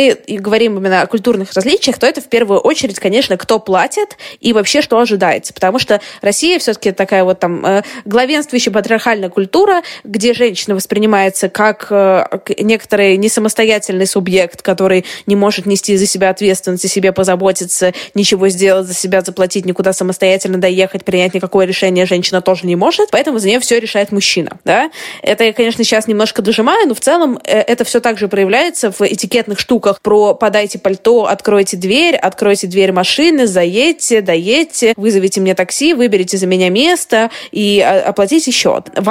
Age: 20-39